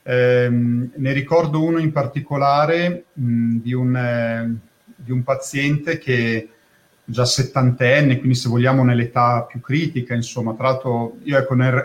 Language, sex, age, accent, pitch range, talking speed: Italian, male, 40-59, native, 125-155 Hz, 140 wpm